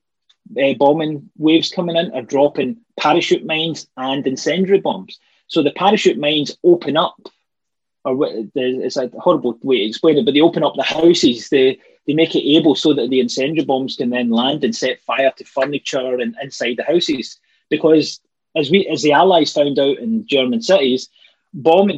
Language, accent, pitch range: English, British, 125-160 Hz